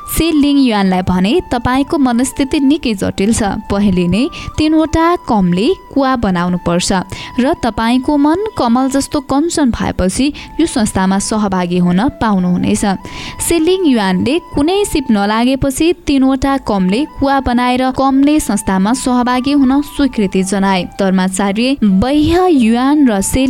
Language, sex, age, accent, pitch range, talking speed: English, female, 20-39, Indian, 200-290 Hz, 115 wpm